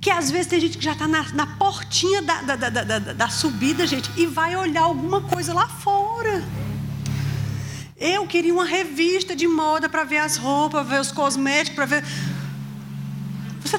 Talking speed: 180 wpm